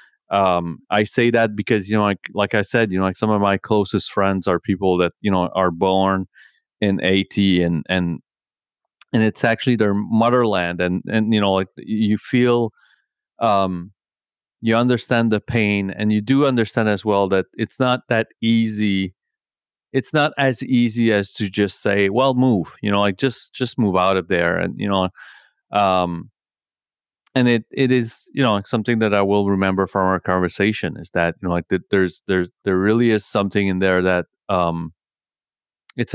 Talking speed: 185 wpm